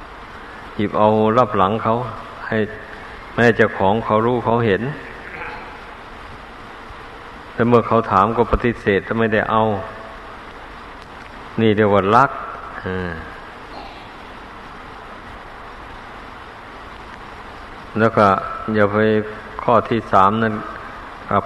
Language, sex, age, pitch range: Thai, male, 50-69, 100-110 Hz